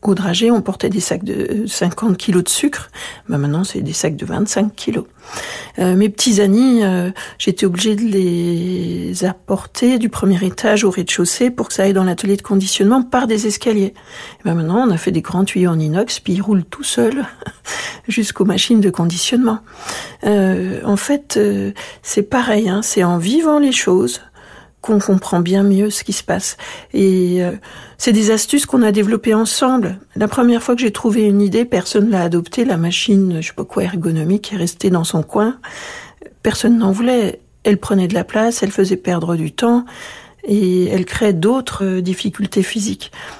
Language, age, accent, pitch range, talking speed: French, 50-69, French, 185-225 Hz, 190 wpm